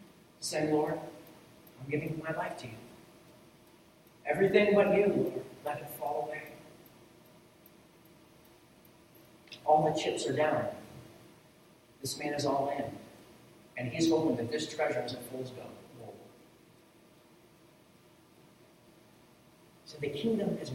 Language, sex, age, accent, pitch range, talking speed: English, male, 40-59, American, 150-195 Hz, 115 wpm